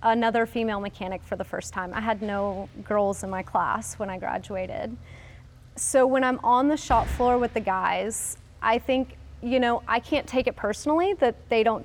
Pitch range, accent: 200-245 Hz, American